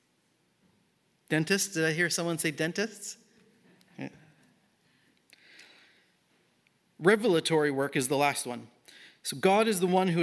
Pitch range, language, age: 155-190 Hz, English, 30-49